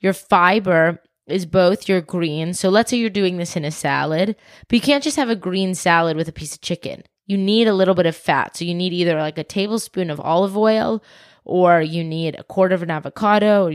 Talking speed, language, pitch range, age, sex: 235 wpm, English, 160-190 Hz, 20-39, female